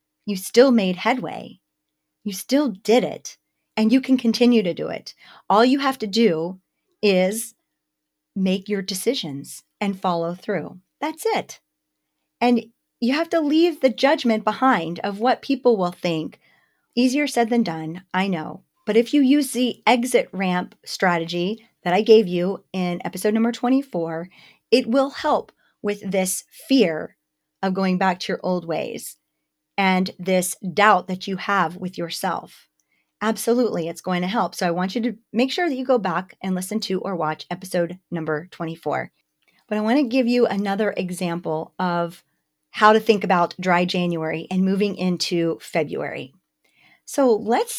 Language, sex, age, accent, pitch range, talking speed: English, female, 40-59, American, 180-235 Hz, 165 wpm